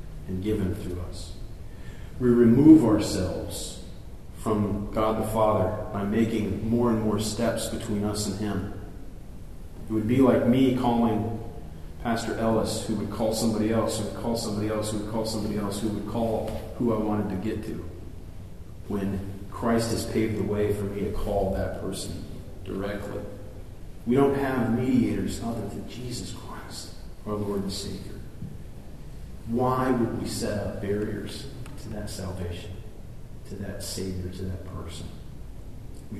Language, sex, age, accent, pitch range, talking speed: English, male, 40-59, American, 95-115 Hz, 155 wpm